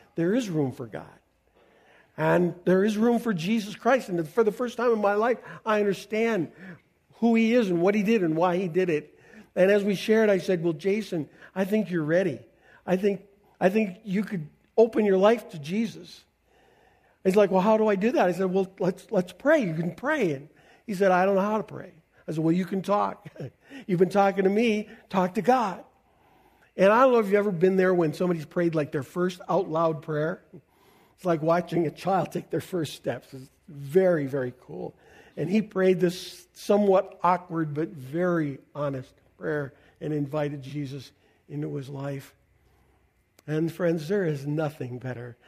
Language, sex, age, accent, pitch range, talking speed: English, male, 50-69, American, 150-200 Hz, 200 wpm